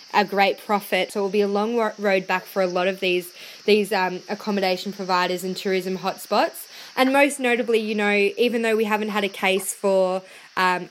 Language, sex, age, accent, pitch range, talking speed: English, female, 20-39, Australian, 195-220 Hz, 200 wpm